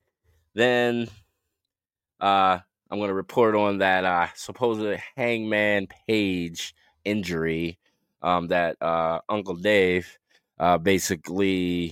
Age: 20-39